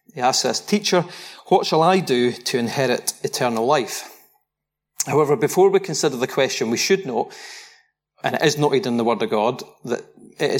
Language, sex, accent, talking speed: English, male, British, 180 wpm